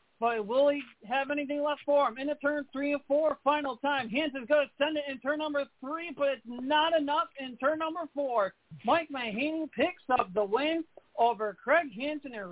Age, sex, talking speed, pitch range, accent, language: 40-59, male, 205 wpm, 180-240 Hz, American, English